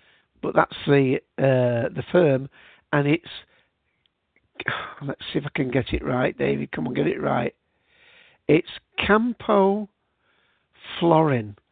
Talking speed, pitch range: 130 wpm, 135-165 Hz